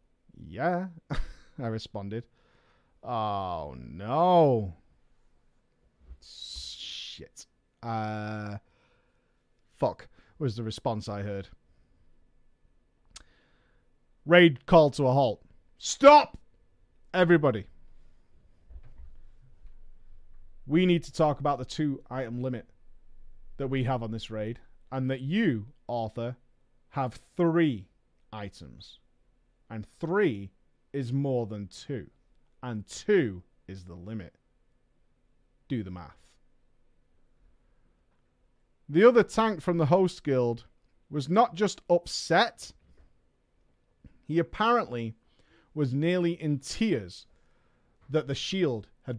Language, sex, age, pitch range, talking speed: English, male, 30-49, 95-150 Hz, 95 wpm